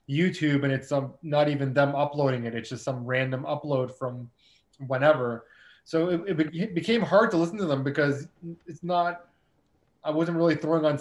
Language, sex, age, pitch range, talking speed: English, male, 20-39, 130-155 Hz, 190 wpm